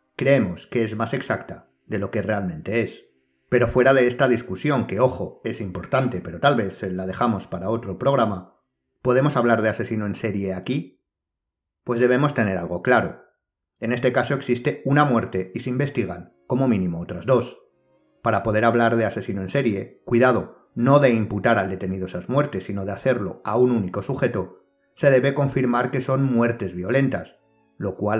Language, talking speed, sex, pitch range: Spanish, 175 wpm, male, 95-125 Hz